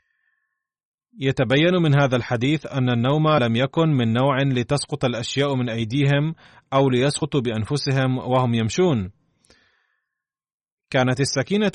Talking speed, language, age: 105 wpm, Arabic, 30-49